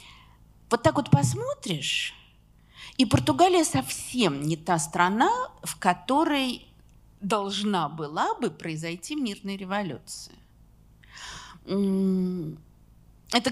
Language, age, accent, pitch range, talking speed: Russian, 40-59, native, 165-260 Hz, 85 wpm